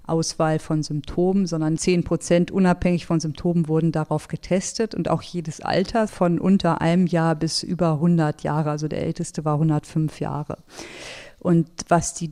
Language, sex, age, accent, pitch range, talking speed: German, female, 40-59, German, 160-180 Hz, 160 wpm